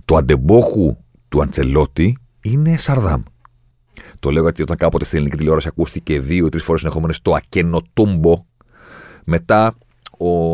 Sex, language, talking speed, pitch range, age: male, Greek, 125 wpm, 85-120 Hz, 40-59